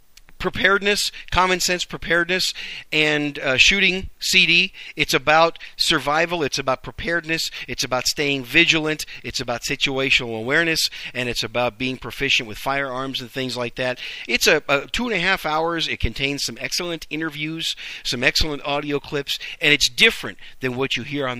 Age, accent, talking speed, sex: 50-69, American, 155 wpm, male